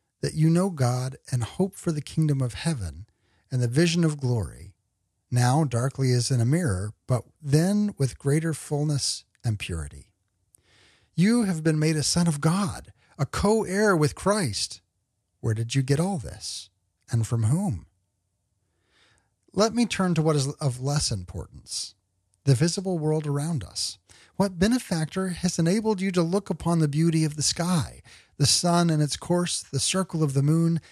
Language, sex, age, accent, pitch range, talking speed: English, male, 40-59, American, 105-165 Hz, 170 wpm